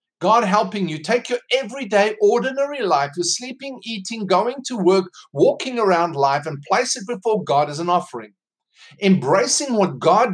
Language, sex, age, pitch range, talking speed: English, male, 50-69, 190-245 Hz, 165 wpm